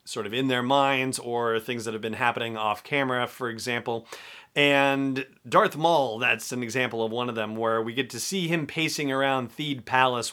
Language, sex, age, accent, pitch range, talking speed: English, male, 40-59, American, 115-135 Hz, 200 wpm